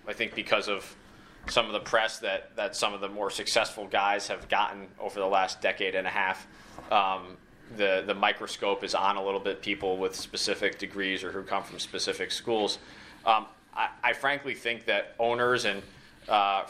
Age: 20-39